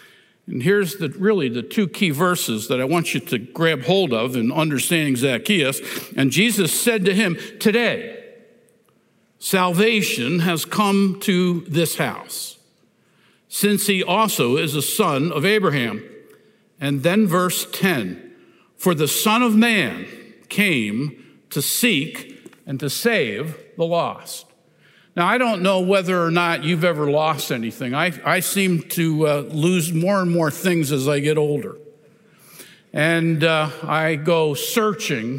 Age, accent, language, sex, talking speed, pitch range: 60-79, American, English, male, 145 wpm, 155-195 Hz